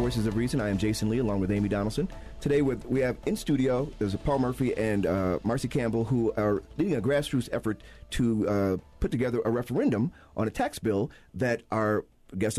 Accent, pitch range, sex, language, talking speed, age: American, 100-125 Hz, male, English, 205 wpm, 40-59